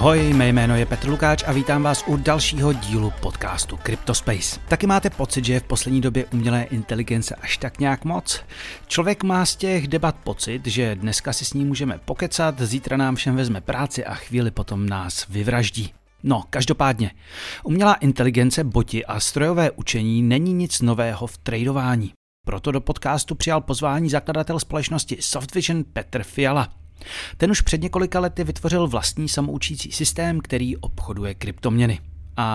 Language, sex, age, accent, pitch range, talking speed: Czech, male, 40-59, native, 110-150 Hz, 160 wpm